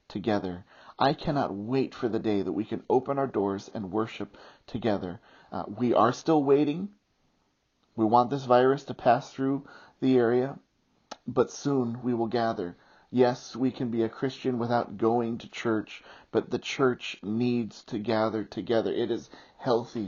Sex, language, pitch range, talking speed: male, English, 110-130 Hz, 165 wpm